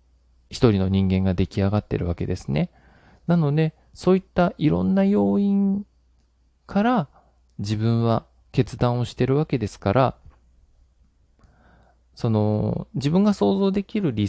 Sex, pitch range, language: male, 90-140 Hz, Japanese